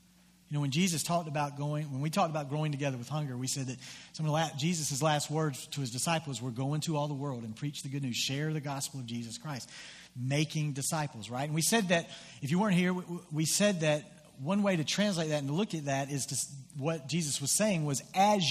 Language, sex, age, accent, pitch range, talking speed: English, male, 40-59, American, 150-210 Hz, 245 wpm